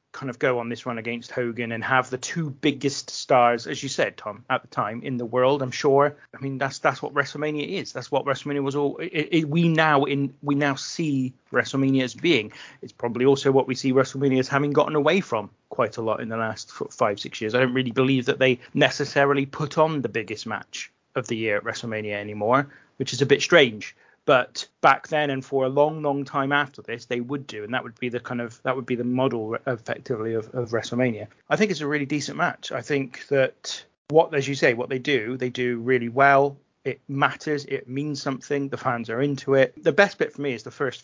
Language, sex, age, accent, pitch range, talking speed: English, male, 30-49, British, 120-145 Hz, 235 wpm